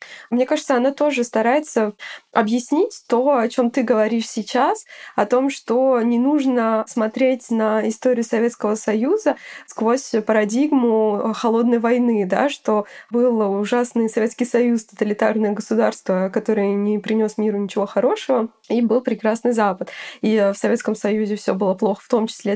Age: 20-39